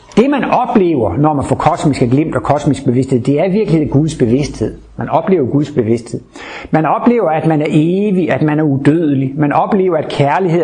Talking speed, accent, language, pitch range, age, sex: 190 wpm, native, Danish, 125-165 Hz, 60-79, male